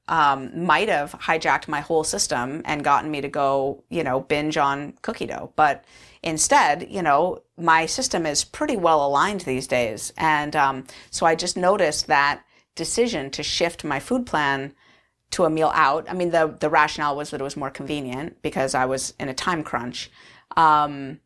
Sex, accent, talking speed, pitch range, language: female, American, 185 wpm, 140-170 Hz, English